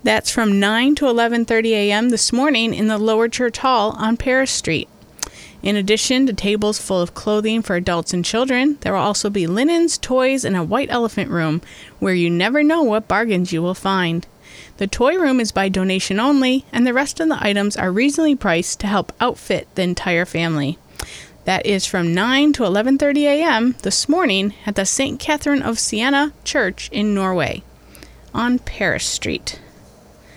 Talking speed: 180 wpm